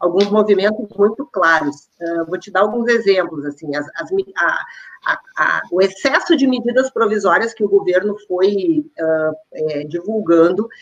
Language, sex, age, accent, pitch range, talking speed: Portuguese, female, 40-59, Brazilian, 195-260 Hz, 110 wpm